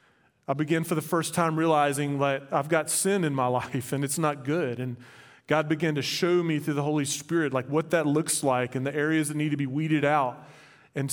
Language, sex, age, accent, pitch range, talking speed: English, male, 30-49, American, 140-170 Hz, 230 wpm